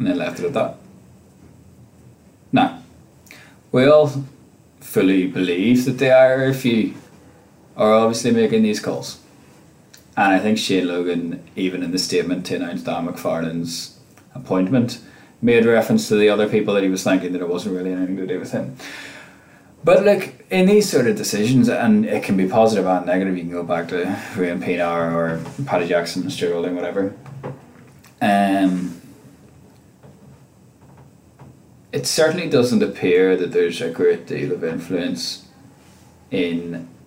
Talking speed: 150 wpm